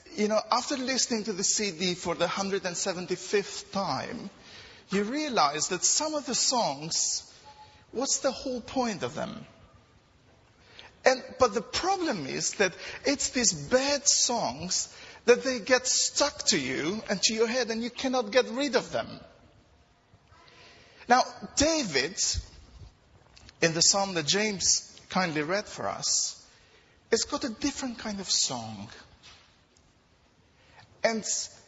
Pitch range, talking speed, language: 190-260 Hz, 135 wpm, English